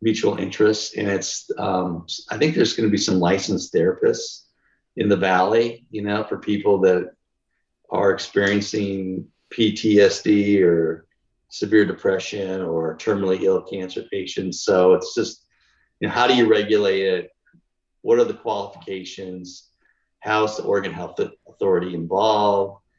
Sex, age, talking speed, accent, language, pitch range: male, 50-69, 140 wpm, American, English, 90-115 Hz